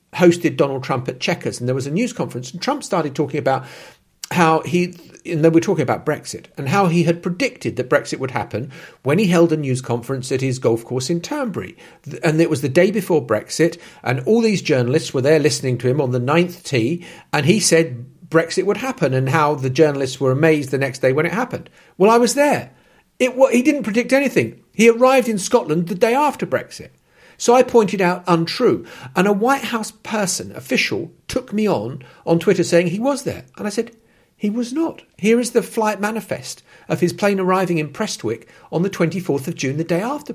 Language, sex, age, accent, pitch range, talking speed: English, male, 50-69, British, 150-225 Hz, 215 wpm